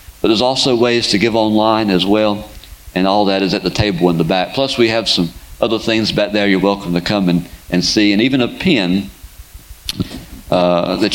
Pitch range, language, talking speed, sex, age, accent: 90-125 Hz, English, 215 wpm, male, 50-69, American